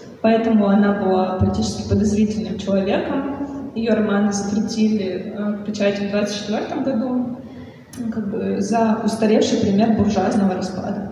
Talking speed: 110 wpm